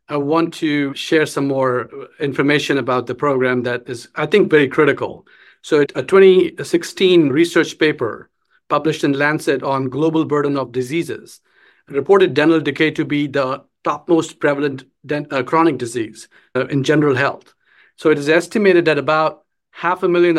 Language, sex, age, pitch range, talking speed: English, male, 50-69, 140-165 Hz, 155 wpm